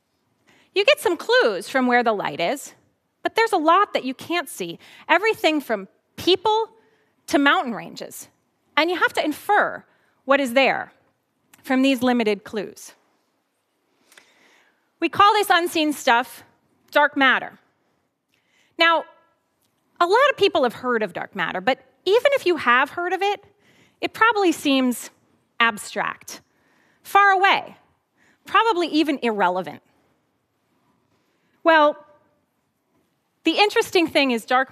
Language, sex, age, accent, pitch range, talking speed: English, female, 30-49, American, 250-350 Hz, 130 wpm